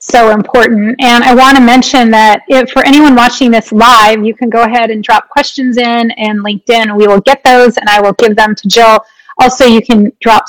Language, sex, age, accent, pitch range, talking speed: English, female, 30-49, American, 215-265 Hz, 225 wpm